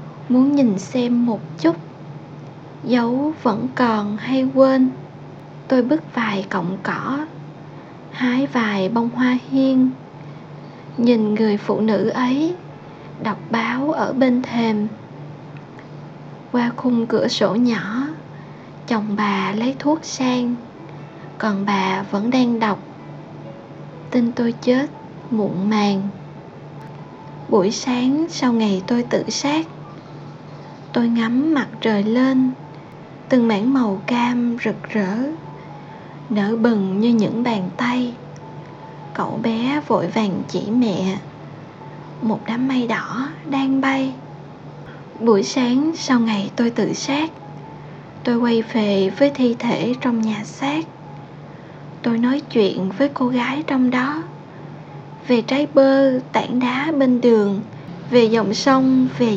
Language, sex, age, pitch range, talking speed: Vietnamese, female, 20-39, 200-255 Hz, 120 wpm